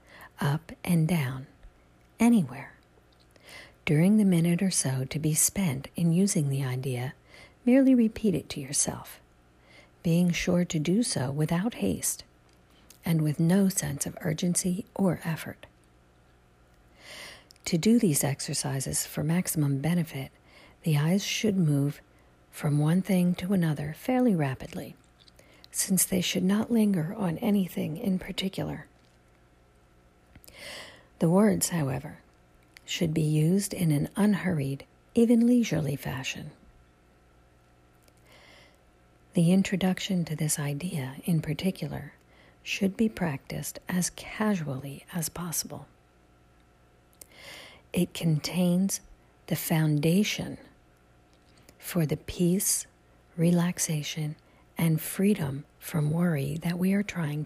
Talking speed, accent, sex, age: 110 wpm, American, female, 50-69